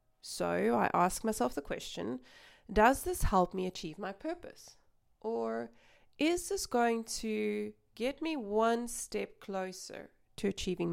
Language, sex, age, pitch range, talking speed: English, female, 20-39, 190-240 Hz, 135 wpm